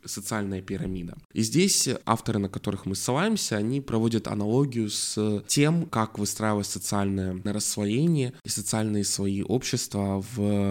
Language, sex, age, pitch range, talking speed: Russian, male, 20-39, 100-130 Hz, 130 wpm